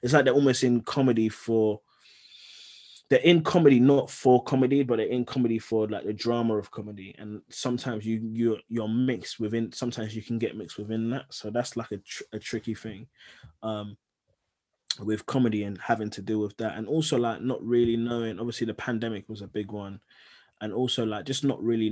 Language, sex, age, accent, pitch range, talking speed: English, male, 20-39, British, 110-125 Hz, 200 wpm